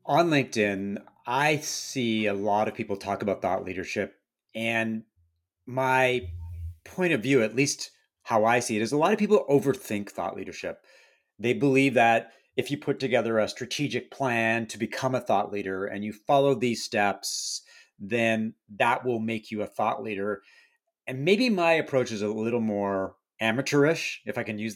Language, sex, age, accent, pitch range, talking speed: English, male, 40-59, American, 105-135 Hz, 175 wpm